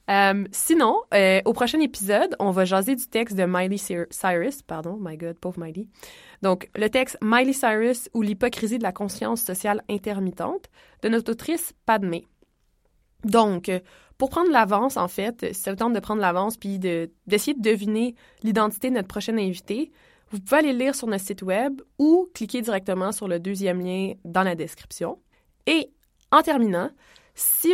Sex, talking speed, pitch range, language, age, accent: female, 170 wpm, 190-235 Hz, English, 20-39, Canadian